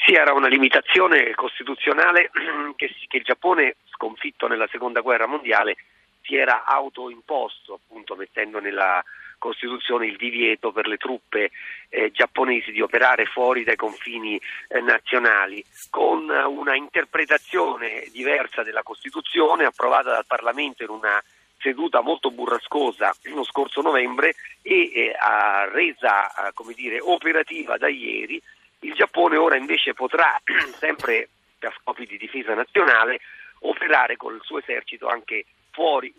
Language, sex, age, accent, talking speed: Italian, male, 40-59, native, 130 wpm